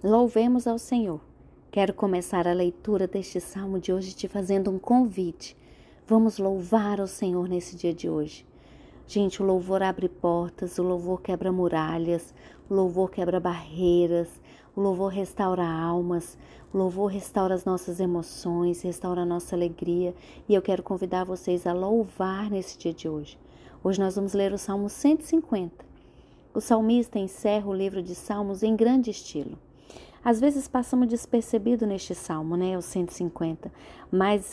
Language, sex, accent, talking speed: Portuguese, female, Brazilian, 155 wpm